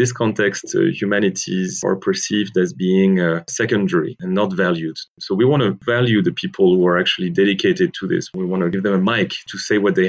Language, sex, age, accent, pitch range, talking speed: English, male, 30-49, French, 95-115 Hz, 220 wpm